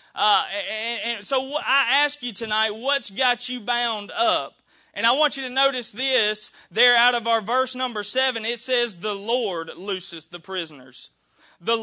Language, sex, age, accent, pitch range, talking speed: English, male, 30-49, American, 200-255 Hz, 180 wpm